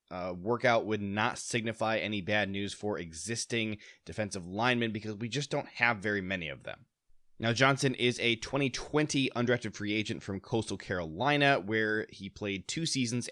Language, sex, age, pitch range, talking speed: English, male, 20-39, 100-125 Hz, 165 wpm